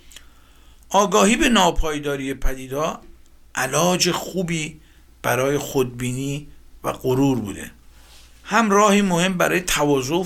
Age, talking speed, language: 60-79, 100 wpm, Persian